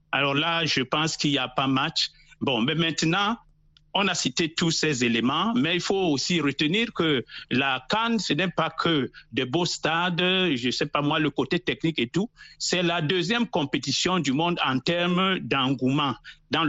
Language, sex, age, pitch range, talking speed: French, male, 50-69, 140-180 Hz, 190 wpm